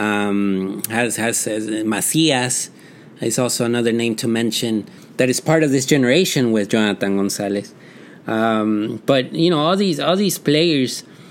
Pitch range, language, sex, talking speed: 115-150 Hz, Spanish, male, 155 wpm